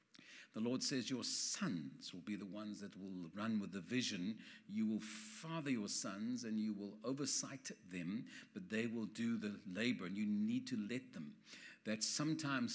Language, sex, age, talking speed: English, male, 60-79, 185 wpm